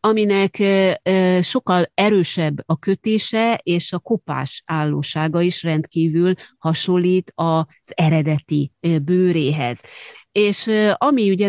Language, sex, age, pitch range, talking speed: Hungarian, female, 30-49, 160-190 Hz, 95 wpm